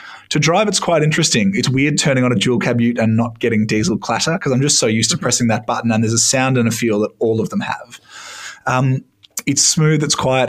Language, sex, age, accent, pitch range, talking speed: English, male, 20-39, Australian, 115-135 Hz, 250 wpm